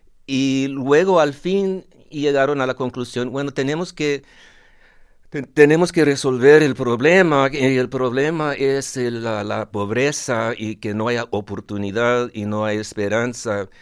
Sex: male